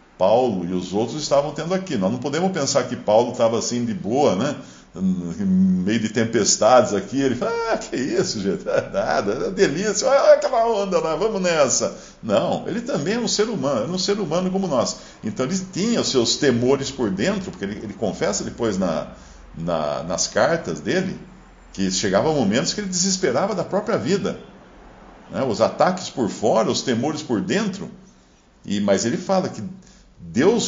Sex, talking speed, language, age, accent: male, 180 wpm, Portuguese, 50-69, Brazilian